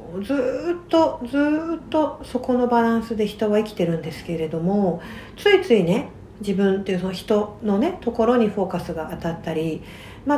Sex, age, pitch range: female, 60-79, 175-260 Hz